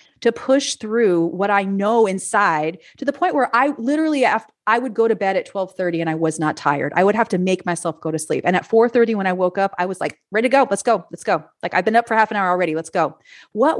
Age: 30-49